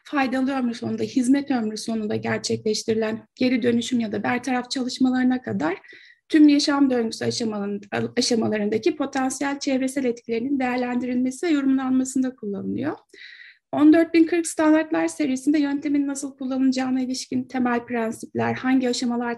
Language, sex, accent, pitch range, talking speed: Turkish, female, native, 230-280 Hz, 110 wpm